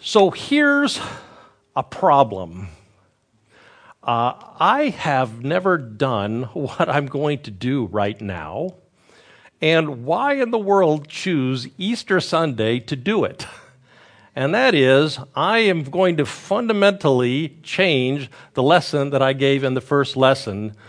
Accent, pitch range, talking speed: American, 130-180 Hz, 130 wpm